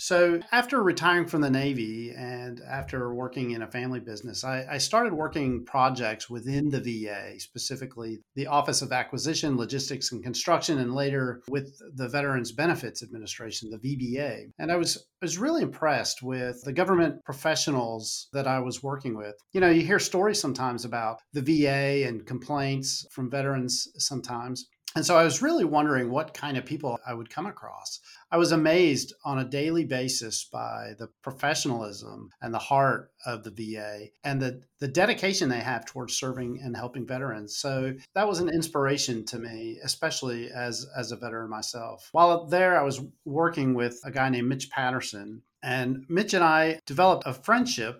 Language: English